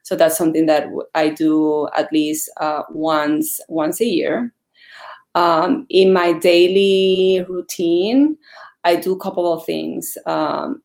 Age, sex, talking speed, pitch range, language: 20-39, female, 140 wpm, 160-235 Hz, English